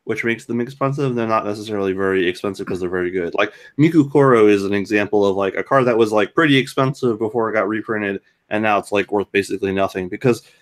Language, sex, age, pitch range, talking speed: English, male, 20-39, 100-135 Hz, 225 wpm